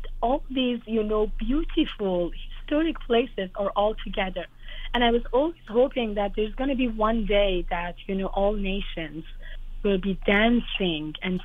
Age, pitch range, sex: 30-49, 190-240 Hz, female